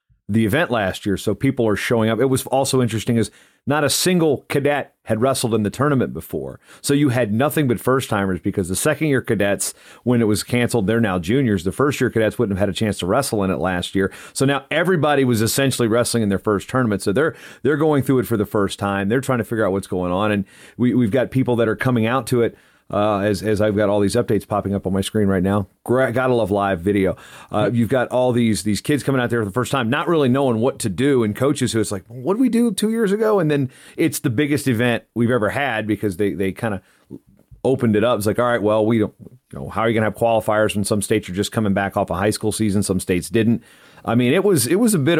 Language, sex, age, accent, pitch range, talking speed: English, male, 40-59, American, 105-130 Hz, 270 wpm